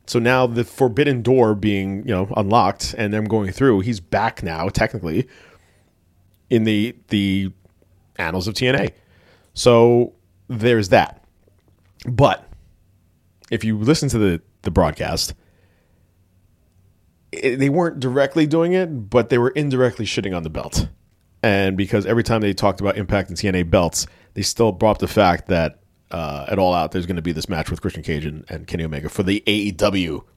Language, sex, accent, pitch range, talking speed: English, male, American, 90-120 Hz, 165 wpm